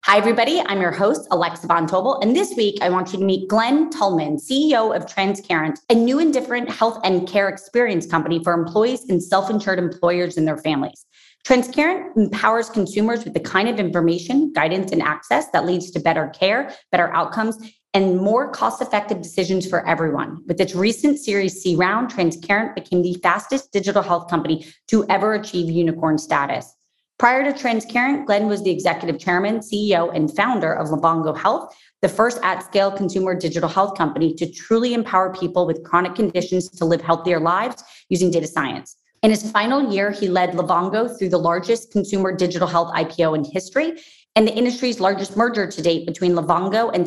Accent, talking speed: American, 180 wpm